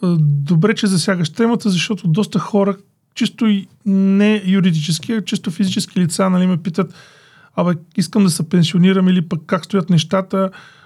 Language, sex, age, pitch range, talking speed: Bulgarian, male, 20-39, 165-200 Hz, 155 wpm